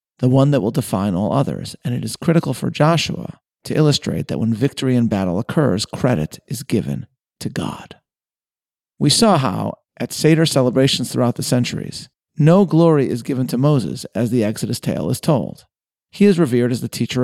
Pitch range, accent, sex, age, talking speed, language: 120-155 Hz, American, male, 40-59, 185 wpm, English